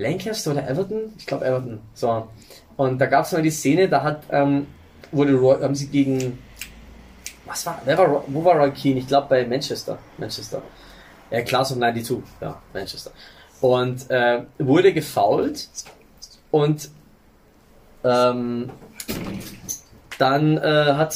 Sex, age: male, 20-39